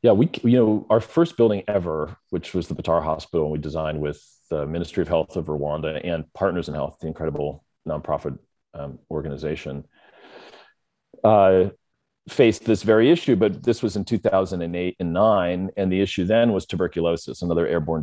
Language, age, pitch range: English, 40-59, 80-90 Hz